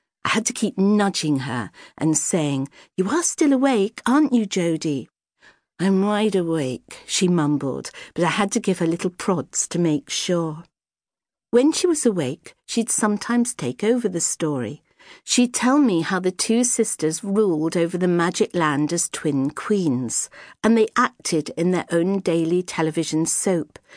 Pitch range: 160-230 Hz